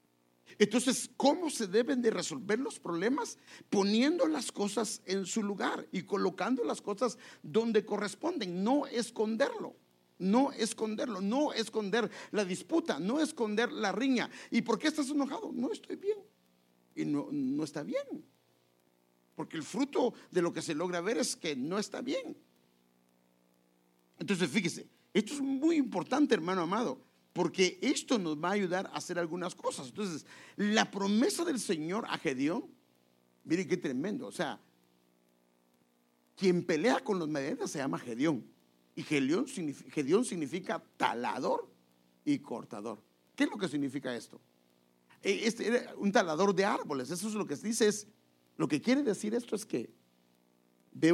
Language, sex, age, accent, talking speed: English, male, 50-69, Mexican, 155 wpm